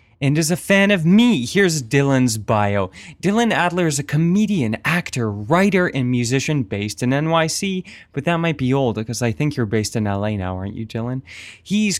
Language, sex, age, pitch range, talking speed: English, male, 20-39, 110-165 Hz, 190 wpm